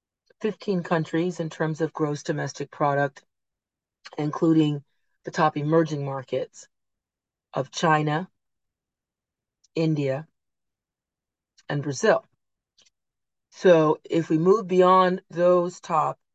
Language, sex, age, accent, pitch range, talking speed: English, female, 40-59, American, 150-180 Hz, 90 wpm